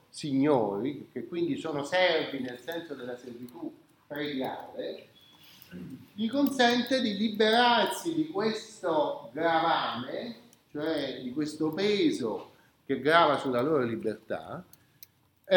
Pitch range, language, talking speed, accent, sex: 135-225 Hz, Italian, 105 wpm, native, male